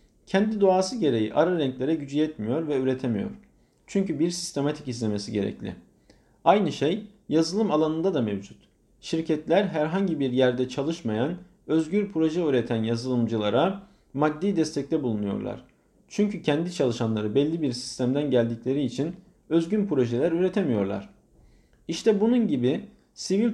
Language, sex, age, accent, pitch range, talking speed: Turkish, male, 50-69, native, 125-190 Hz, 120 wpm